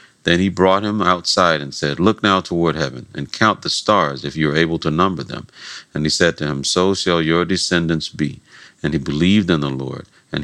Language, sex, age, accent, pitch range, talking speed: English, male, 50-69, American, 75-95 Hz, 220 wpm